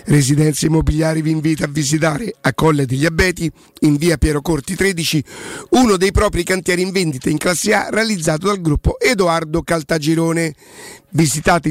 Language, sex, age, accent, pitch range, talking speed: Italian, male, 50-69, native, 160-190 Hz, 155 wpm